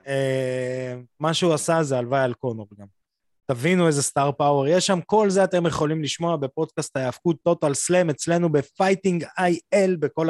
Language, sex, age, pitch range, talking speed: Hebrew, male, 20-39, 135-175 Hz, 165 wpm